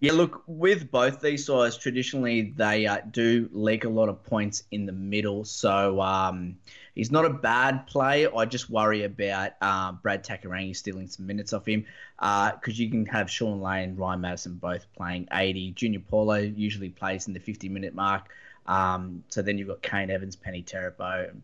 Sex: male